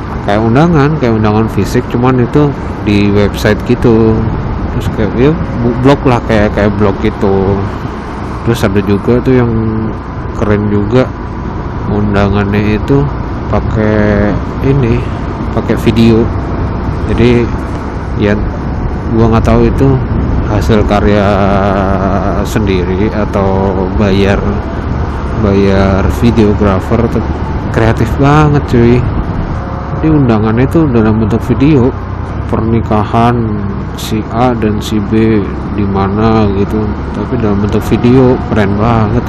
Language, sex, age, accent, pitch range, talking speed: Indonesian, male, 20-39, native, 95-115 Hz, 105 wpm